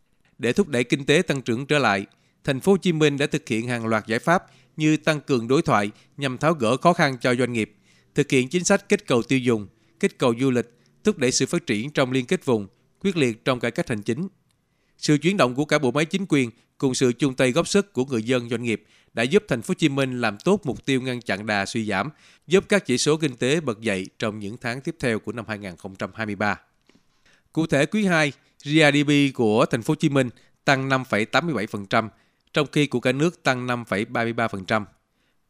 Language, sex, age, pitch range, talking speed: Vietnamese, male, 20-39, 115-155 Hz, 225 wpm